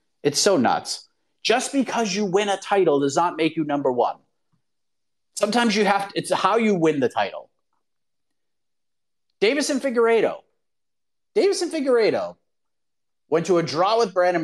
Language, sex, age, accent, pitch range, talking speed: English, male, 30-49, American, 170-235 Hz, 145 wpm